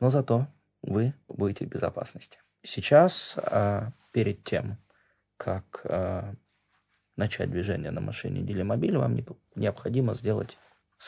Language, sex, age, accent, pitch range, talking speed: Russian, male, 30-49, native, 95-120 Hz, 105 wpm